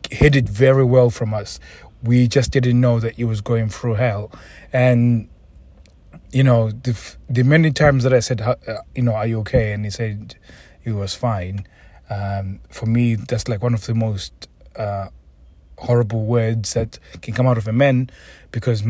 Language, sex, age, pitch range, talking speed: English, male, 30-49, 105-120 Hz, 190 wpm